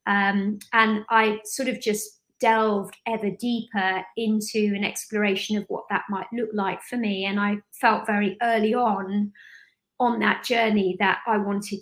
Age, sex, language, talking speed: 30-49, female, English, 160 wpm